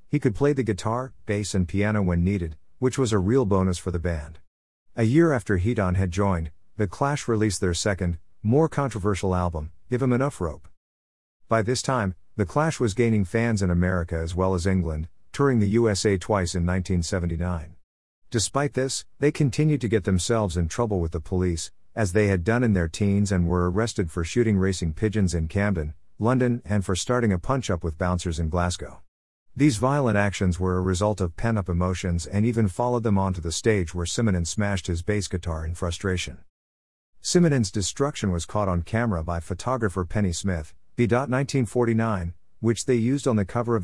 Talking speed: 185 wpm